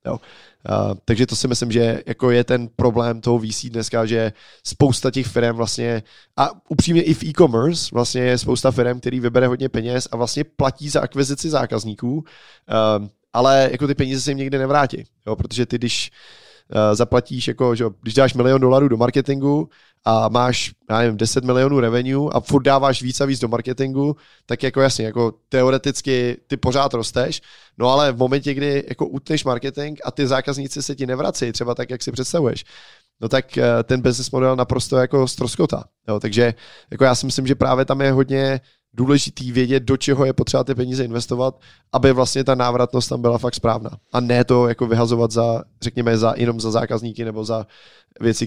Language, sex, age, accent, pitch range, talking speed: Czech, male, 20-39, native, 115-135 Hz, 185 wpm